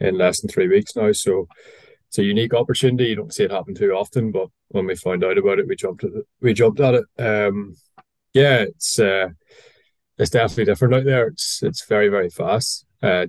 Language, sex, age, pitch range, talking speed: English, male, 20-39, 95-150 Hz, 215 wpm